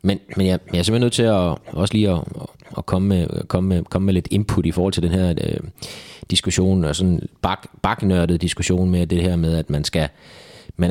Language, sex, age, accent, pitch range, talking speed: Danish, male, 20-39, native, 85-100 Hz, 220 wpm